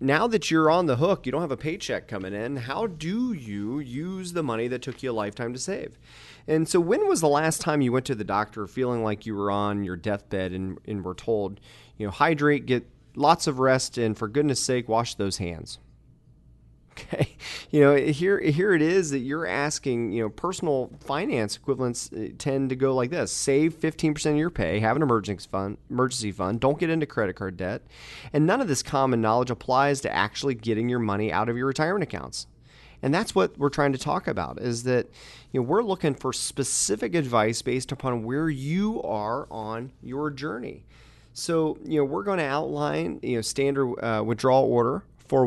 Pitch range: 110-150 Hz